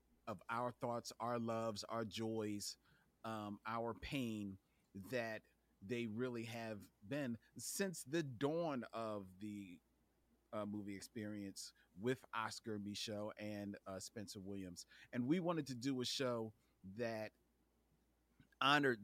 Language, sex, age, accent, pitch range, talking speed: English, male, 40-59, American, 105-130 Hz, 125 wpm